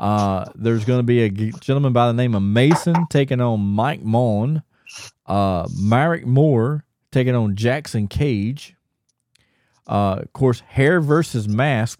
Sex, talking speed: male, 145 wpm